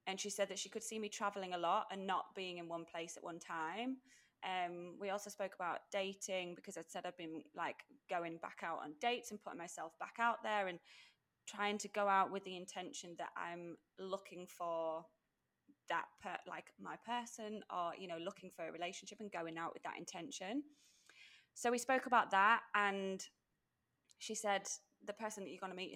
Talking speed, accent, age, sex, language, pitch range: 205 wpm, British, 20-39, female, English, 170-215 Hz